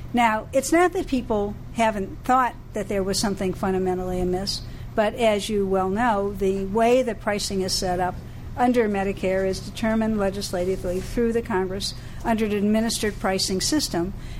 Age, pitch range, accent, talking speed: 50-69, 190-240 Hz, American, 160 wpm